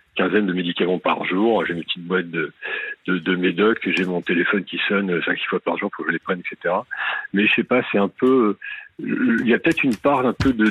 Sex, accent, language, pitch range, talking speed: male, French, French, 95-130 Hz, 250 wpm